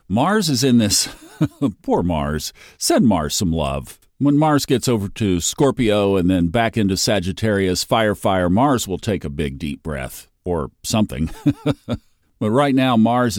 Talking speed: 160 wpm